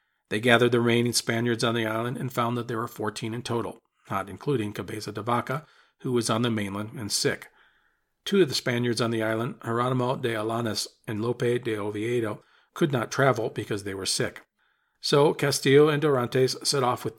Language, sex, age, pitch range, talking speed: English, male, 50-69, 110-130 Hz, 195 wpm